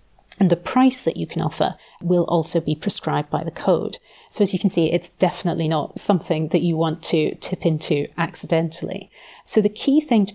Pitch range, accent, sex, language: 165-195 Hz, British, female, English